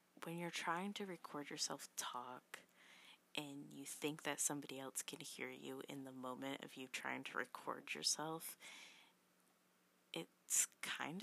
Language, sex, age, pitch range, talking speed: English, female, 20-39, 135-165 Hz, 145 wpm